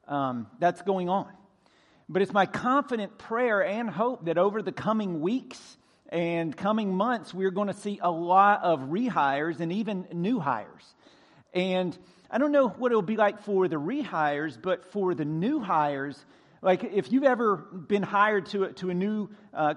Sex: male